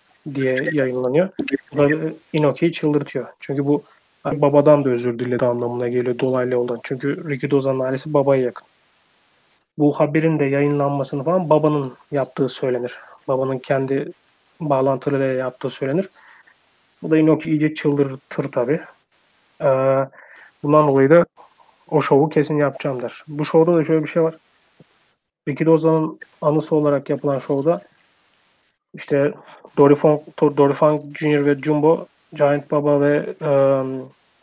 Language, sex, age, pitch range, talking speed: Turkish, male, 30-49, 135-155 Hz, 120 wpm